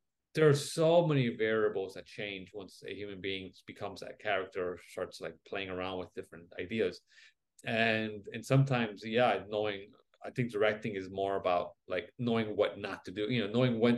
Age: 30-49